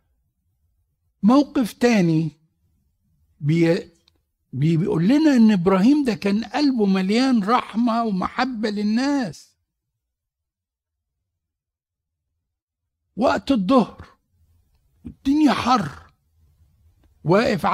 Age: 60-79